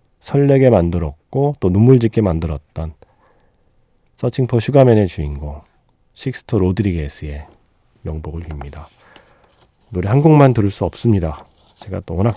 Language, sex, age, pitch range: Korean, male, 40-59, 85-130 Hz